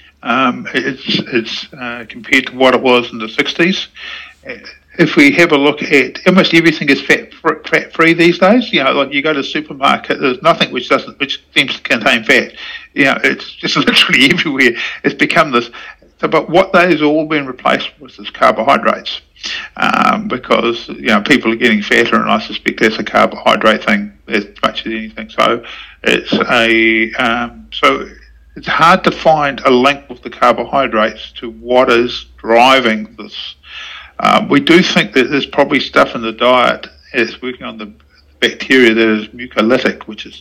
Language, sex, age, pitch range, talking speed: English, male, 50-69, 115-145 Hz, 180 wpm